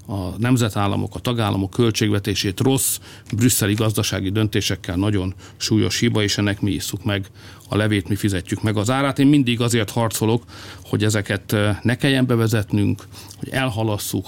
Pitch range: 100-115 Hz